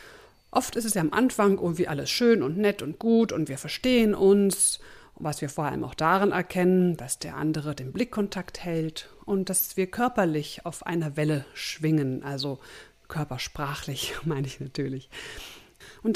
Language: German